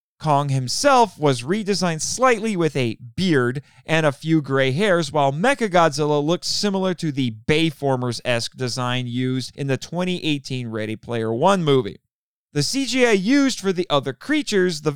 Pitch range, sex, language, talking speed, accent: 135-210 Hz, male, English, 150 wpm, American